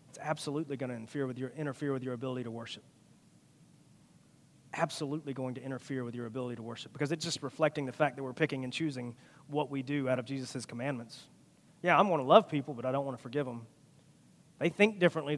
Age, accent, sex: 30-49, American, male